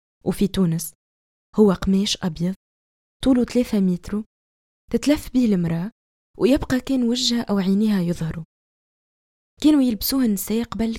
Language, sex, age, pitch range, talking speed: Arabic, female, 20-39, 175-225 Hz, 115 wpm